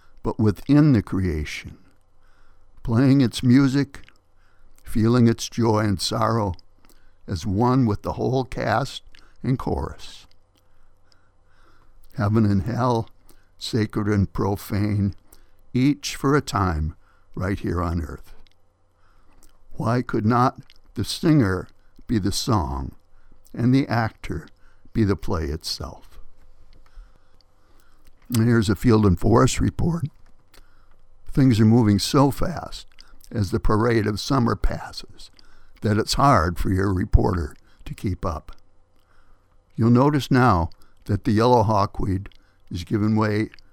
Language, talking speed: English, 115 wpm